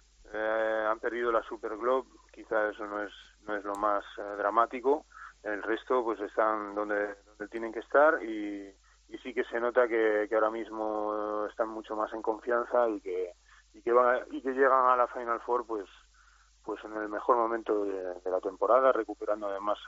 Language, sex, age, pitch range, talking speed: Spanish, male, 30-49, 100-115 Hz, 195 wpm